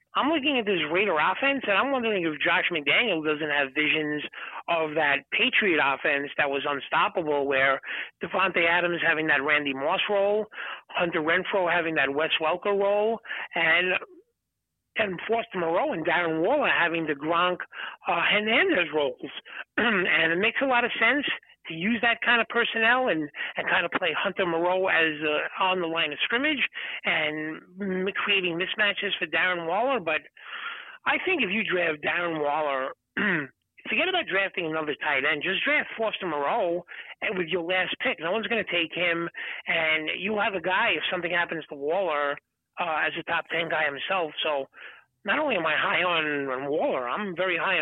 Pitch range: 155-205 Hz